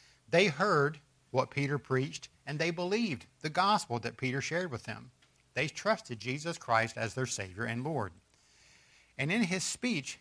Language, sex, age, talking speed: English, male, 60-79, 165 wpm